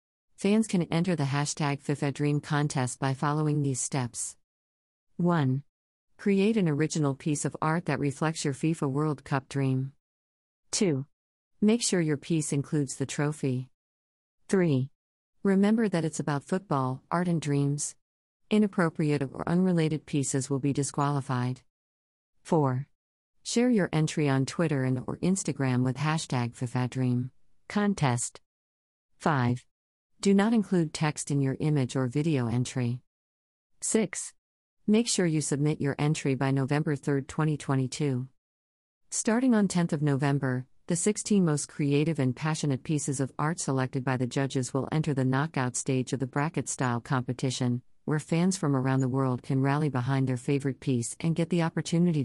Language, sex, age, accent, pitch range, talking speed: English, female, 50-69, American, 130-160 Hz, 145 wpm